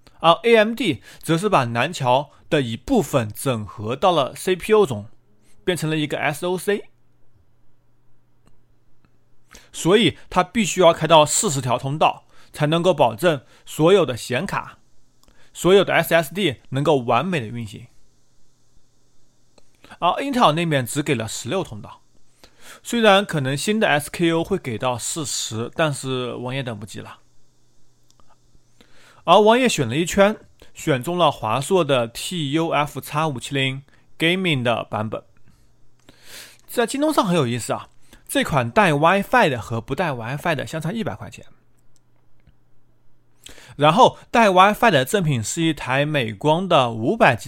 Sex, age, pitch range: male, 30-49, 120-180 Hz